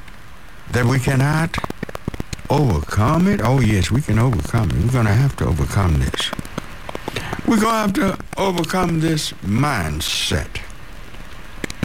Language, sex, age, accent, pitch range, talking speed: English, male, 60-79, American, 95-150 Hz, 130 wpm